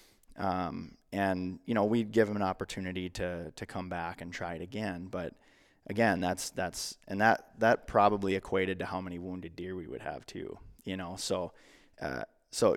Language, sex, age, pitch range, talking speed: English, male, 20-39, 90-105 Hz, 190 wpm